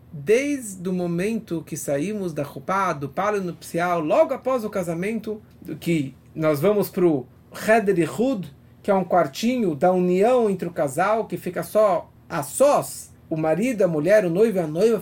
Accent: Brazilian